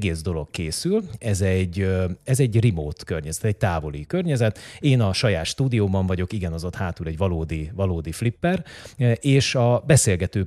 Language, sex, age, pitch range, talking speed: Hungarian, male, 30-49, 85-120 Hz, 155 wpm